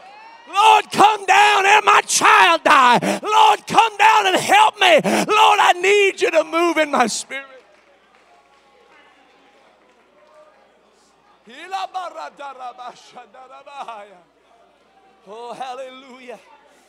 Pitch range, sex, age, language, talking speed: 285-390 Hz, male, 40-59, English, 85 wpm